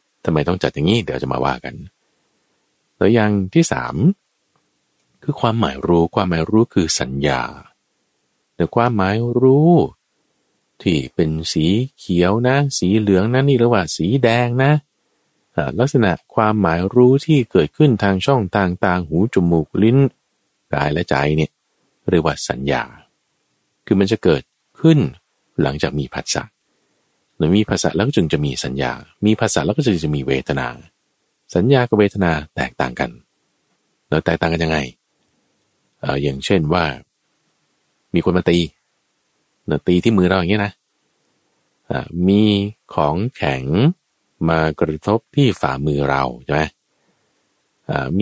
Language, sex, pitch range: Thai, male, 80-115 Hz